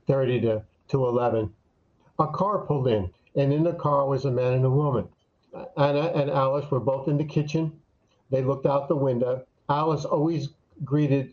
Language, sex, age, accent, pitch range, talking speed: English, male, 60-79, American, 125-150 Hz, 180 wpm